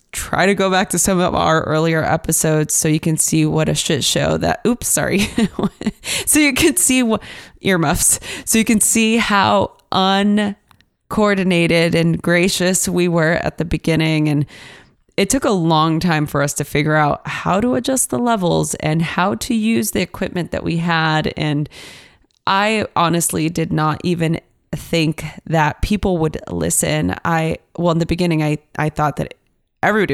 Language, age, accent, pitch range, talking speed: English, 20-39, American, 155-190 Hz, 170 wpm